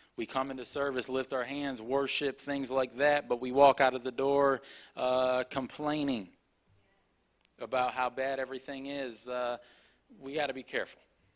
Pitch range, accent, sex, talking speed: 120-140 Hz, American, male, 165 wpm